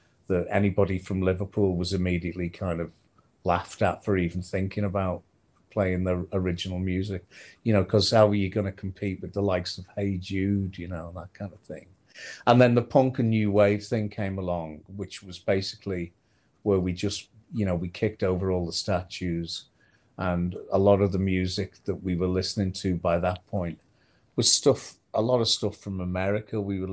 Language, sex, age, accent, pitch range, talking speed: English, male, 40-59, British, 90-105 Hz, 195 wpm